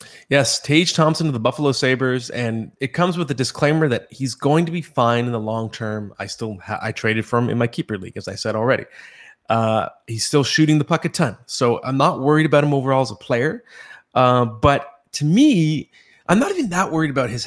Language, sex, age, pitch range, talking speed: English, male, 20-39, 110-145 Hz, 230 wpm